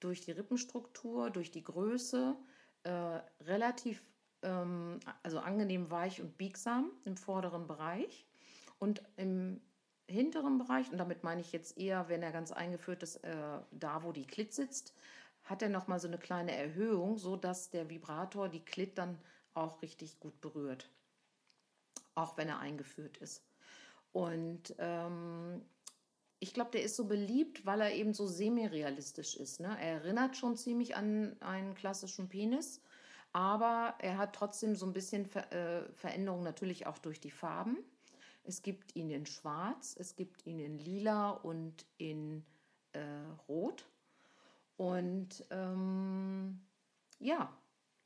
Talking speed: 145 wpm